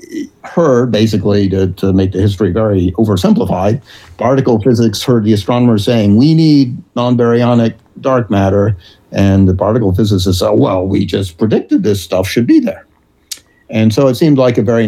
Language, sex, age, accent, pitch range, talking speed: English, male, 50-69, American, 95-115 Hz, 165 wpm